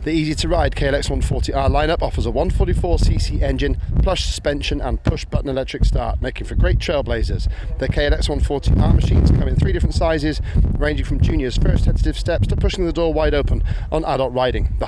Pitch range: 90-145 Hz